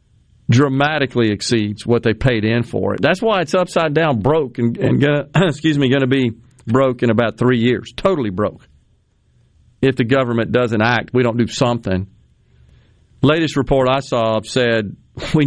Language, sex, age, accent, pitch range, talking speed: English, male, 40-59, American, 110-135 Hz, 155 wpm